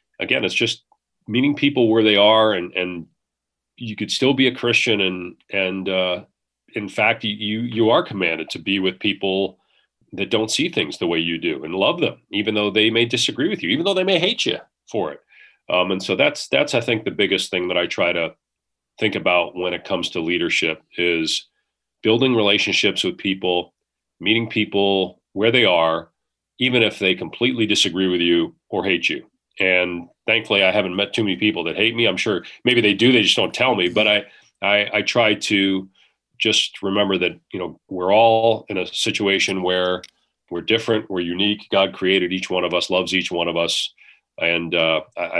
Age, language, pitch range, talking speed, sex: 40-59, English, 90-110 Hz, 200 wpm, male